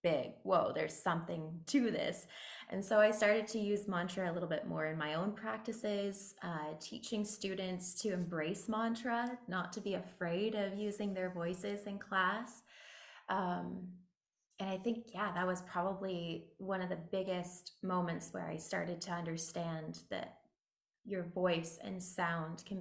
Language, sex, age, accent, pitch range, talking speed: English, female, 20-39, American, 170-200 Hz, 160 wpm